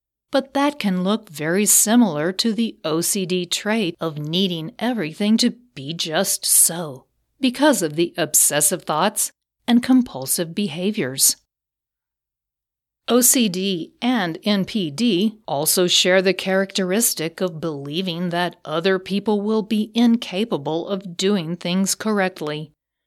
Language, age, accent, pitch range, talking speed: English, 50-69, American, 170-220 Hz, 115 wpm